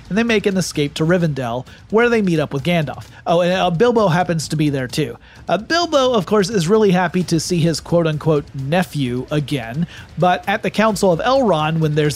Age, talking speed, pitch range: 30-49, 205 wpm, 150-185 Hz